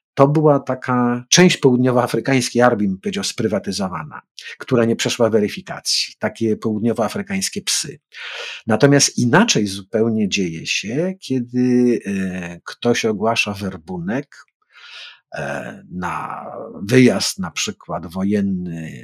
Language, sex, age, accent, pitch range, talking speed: Polish, male, 50-69, native, 110-165 Hz, 90 wpm